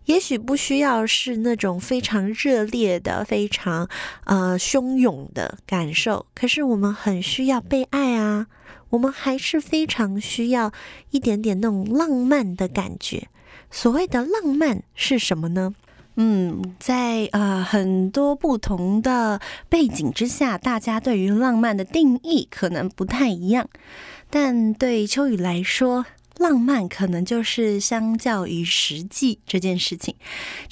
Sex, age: female, 20-39